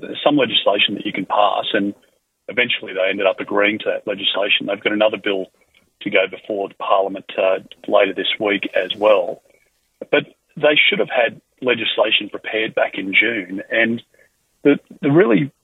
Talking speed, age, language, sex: 170 wpm, 40-59, English, male